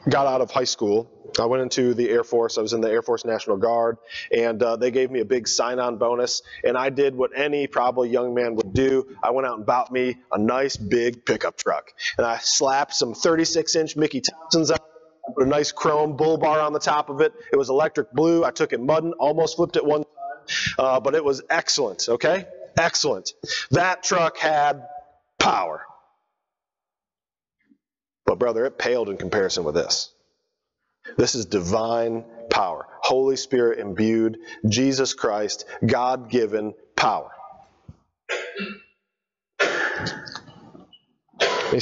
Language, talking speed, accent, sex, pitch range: English, 160 wpm, American, male, 125-210 Hz